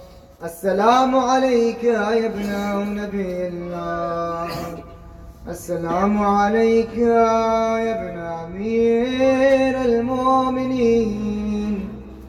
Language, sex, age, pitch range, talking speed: Urdu, male, 20-39, 175-250 Hz, 60 wpm